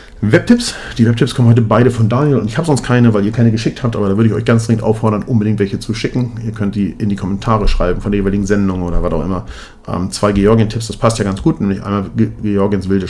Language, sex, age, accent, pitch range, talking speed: German, male, 40-59, German, 95-120 Hz, 260 wpm